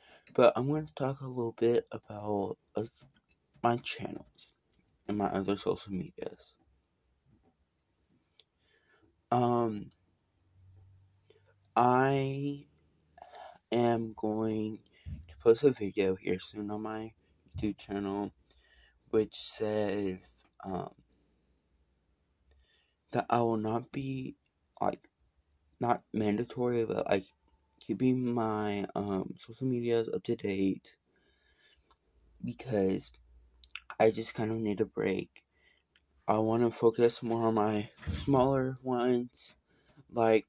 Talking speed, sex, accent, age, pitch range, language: 105 wpm, male, American, 20-39, 95-120 Hz, English